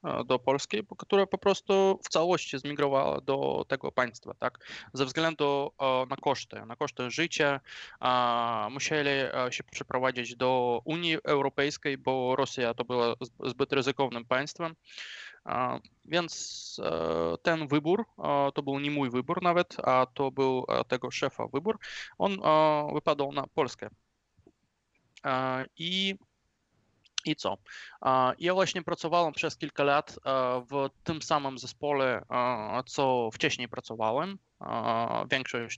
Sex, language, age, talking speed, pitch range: male, Polish, 20-39, 115 wpm, 125-155 Hz